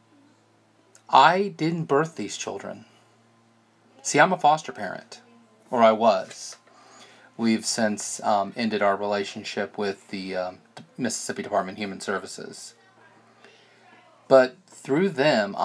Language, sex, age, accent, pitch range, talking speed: English, male, 30-49, American, 105-130 Hz, 115 wpm